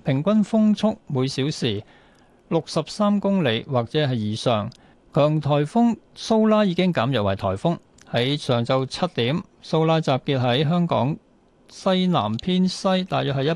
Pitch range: 125-175 Hz